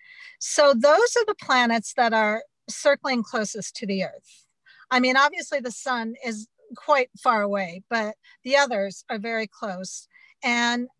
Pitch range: 200-260 Hz